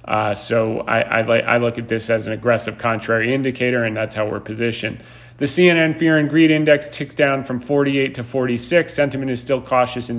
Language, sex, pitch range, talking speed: English, male, 120-140 Hz, 205 wpm